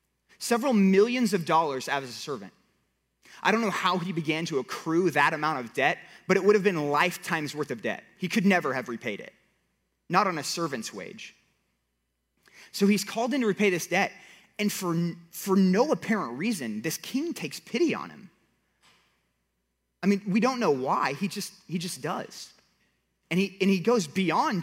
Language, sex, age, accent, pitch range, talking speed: English, male, 30-49, American, 145-205 Hz, 190 wpm